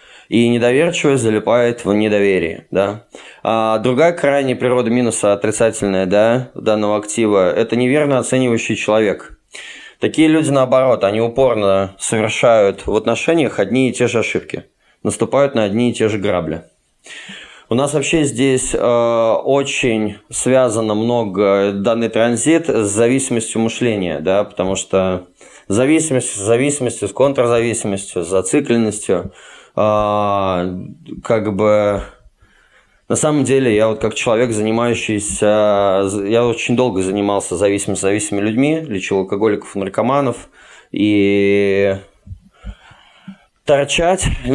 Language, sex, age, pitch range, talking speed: Russian, male, 20-39, 100-125 Hz, 110 wpm